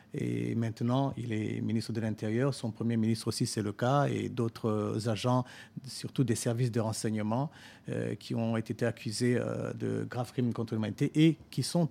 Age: 50-69